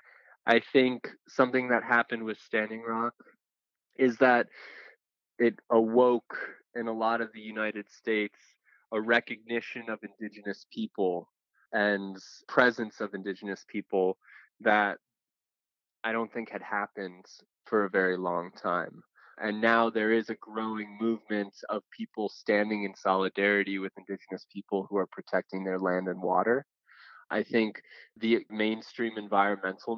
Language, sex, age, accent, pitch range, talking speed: English, male, 20-39, American, 100-115 Hz, 135 wpm